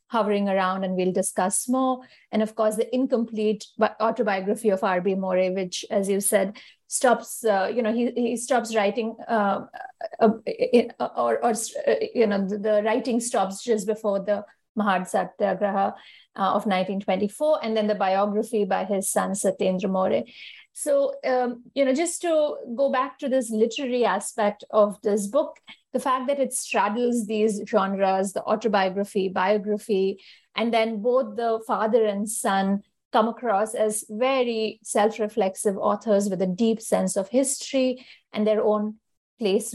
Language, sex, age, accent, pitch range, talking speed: English, female, 50-69, Indian, 200-240 Hz, 160 wpm